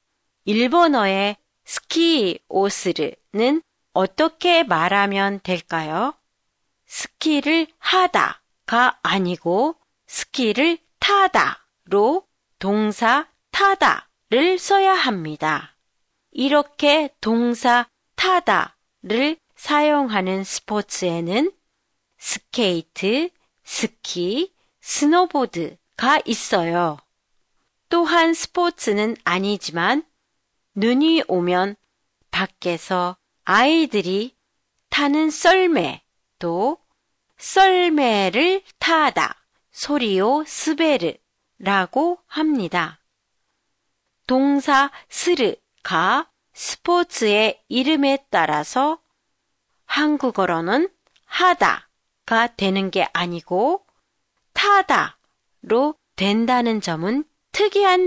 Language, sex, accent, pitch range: Japanese, female, Korean, 195-325 Hz